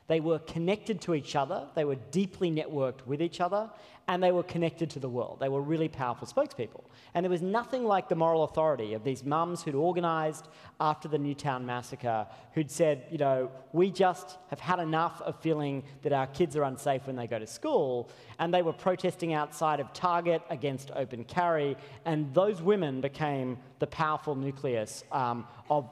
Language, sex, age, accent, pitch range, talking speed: English, male, 40-59, Australian, 135-180 Hz, 190 wpm